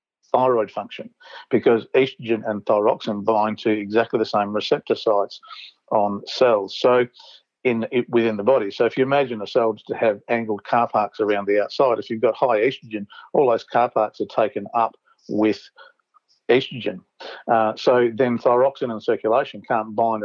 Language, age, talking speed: English, 50-69, 165 wpm